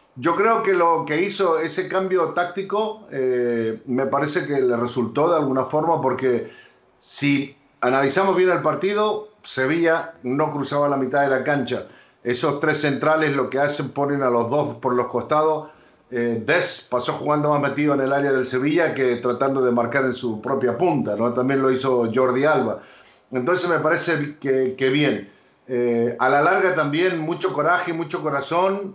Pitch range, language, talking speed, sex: 125-150 Hz, Spanish, 175 wpm, male